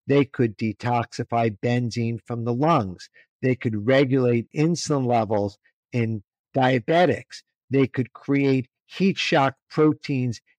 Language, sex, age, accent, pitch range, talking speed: English, male, 50-69, American, 120-155 Hz, 115 wpm